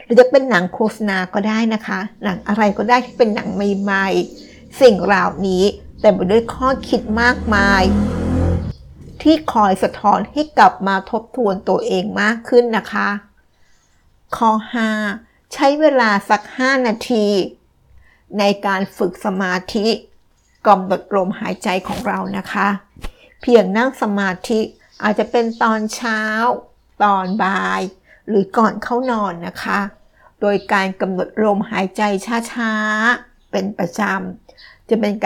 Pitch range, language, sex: 195-230 Hz, Thai, female